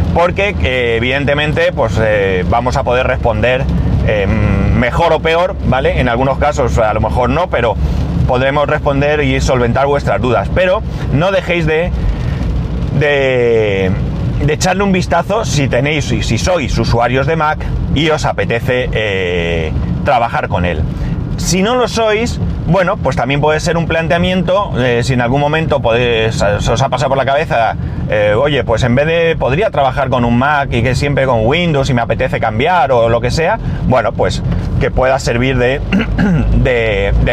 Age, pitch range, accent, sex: 30-49, 110-155 Hz, Spanish, male